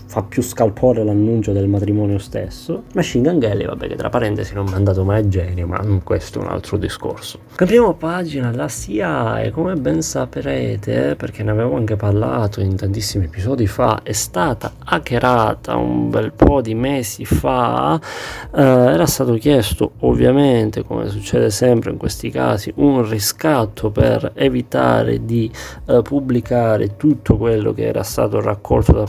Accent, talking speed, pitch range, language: native, 160 wpm, 100-125 Hz, Italian